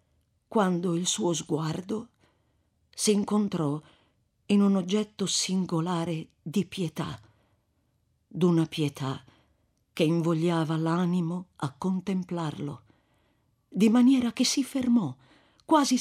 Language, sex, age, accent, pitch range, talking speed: Italian, female, 50-69, native, 140-185 Hz, 95 wpm